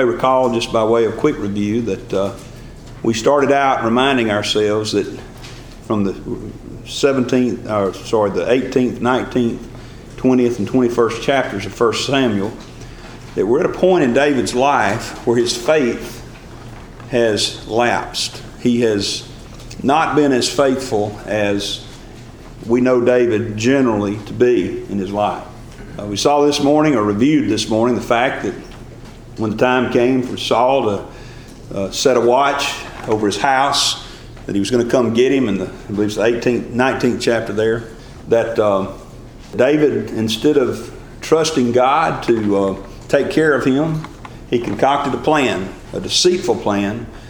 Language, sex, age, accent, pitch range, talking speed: English, male, 50-69, American, 105-130 Hz, 155 wpm